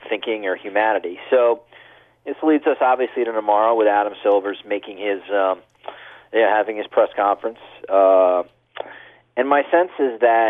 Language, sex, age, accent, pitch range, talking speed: English, male, 40-59, American, 100-130 Hz, 155 wpm